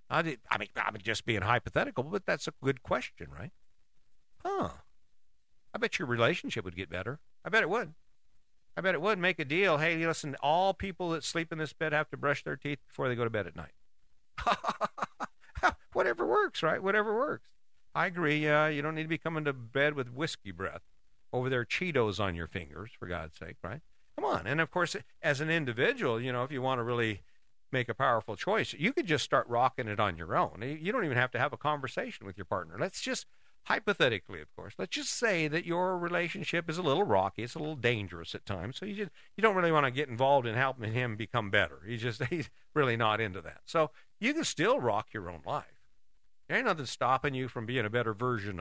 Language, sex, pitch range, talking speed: English, male, 115-165 Hz, 225 wpm